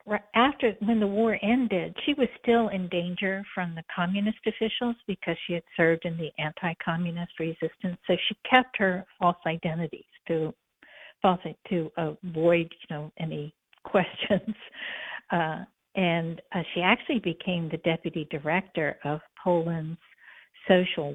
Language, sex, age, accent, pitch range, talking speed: English, female, 60-79, American, 165-195 Hz, 135 wpm